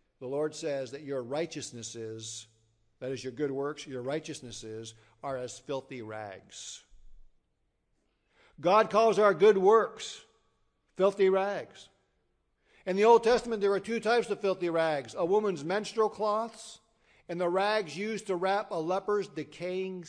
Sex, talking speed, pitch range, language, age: male, 145 wpm, 125-195 Hz, English, 50-69